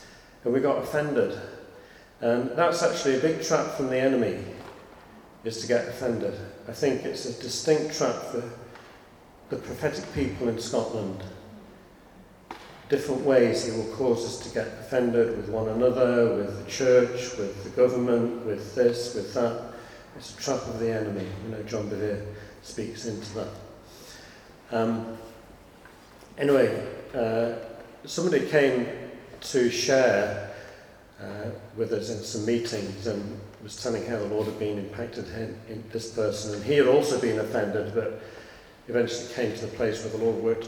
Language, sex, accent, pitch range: English, male, British, 105-120 Hz